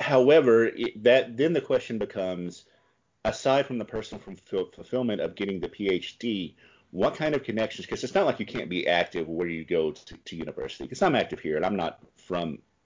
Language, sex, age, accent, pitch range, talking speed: English, male, 30-49, American, 90-110 Hz, 195 wpm